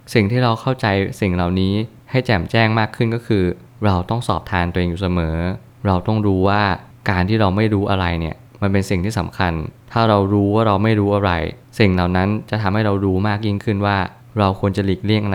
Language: Thai